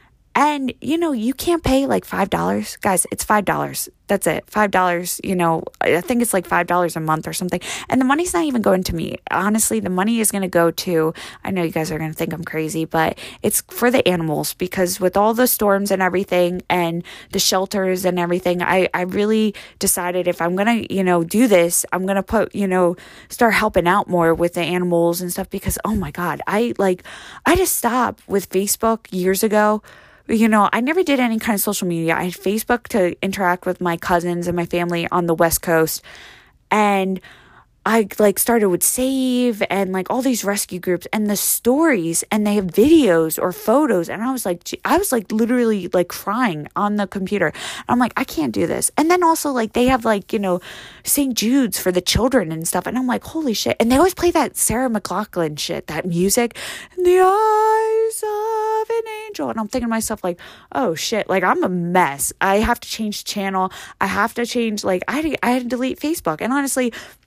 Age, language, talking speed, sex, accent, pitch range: 20-39, English, 220 wpm, female, American, 180-245 Hz